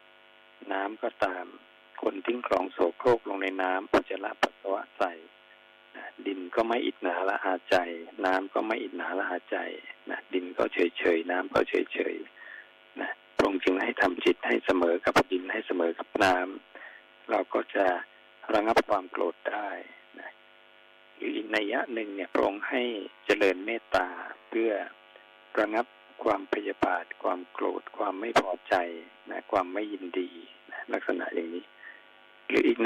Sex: male